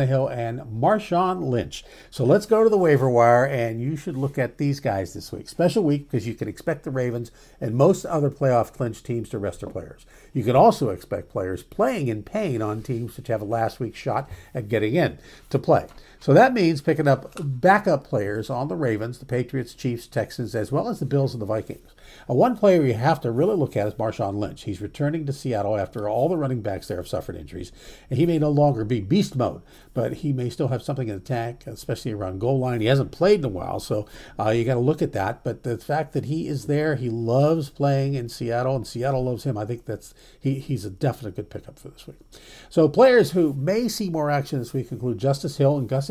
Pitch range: 115-150 Hz